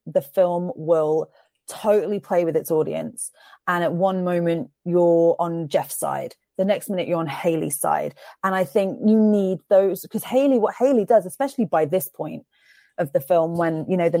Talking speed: 190 wpm